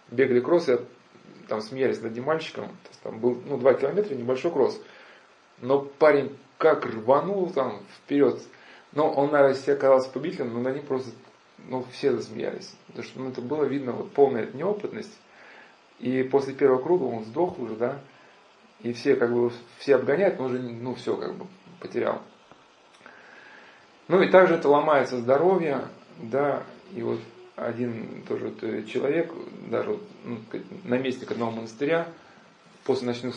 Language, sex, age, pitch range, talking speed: Russian, male, 20-39, 120-160 Hz, 155 wpm